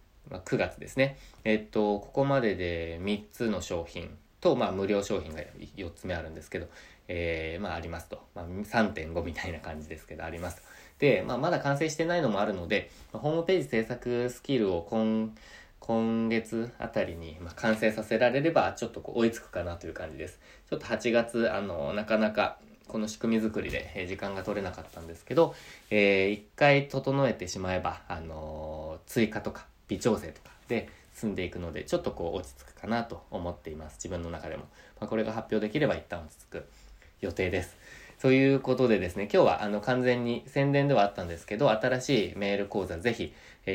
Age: 20-39